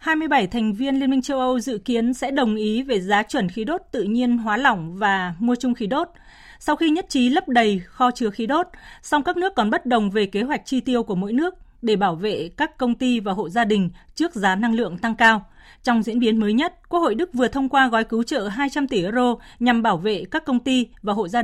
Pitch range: 210-265 Hz